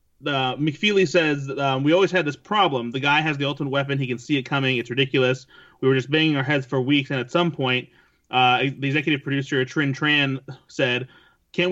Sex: male